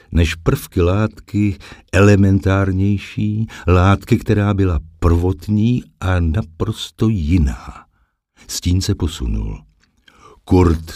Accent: native